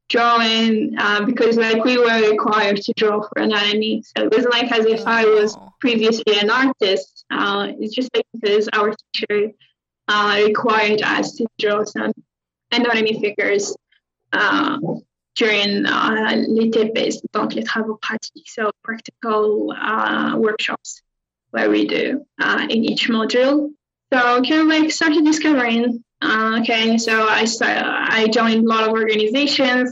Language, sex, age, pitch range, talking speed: English, female, 10-29, 215-245 Hz, 145 wpm